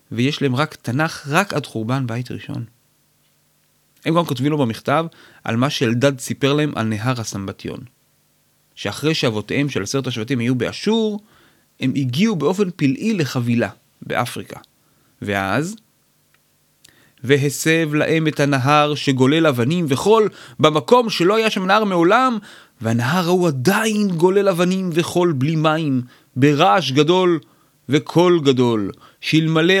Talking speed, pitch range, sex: 125 wpm, 125-180 Hz, male